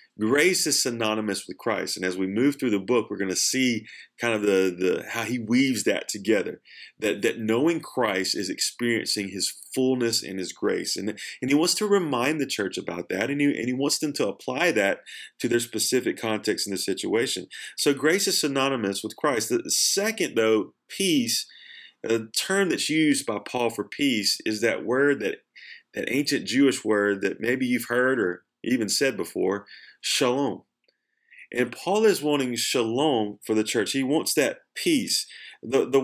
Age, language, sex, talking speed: 30-49, English, male, 185 wpm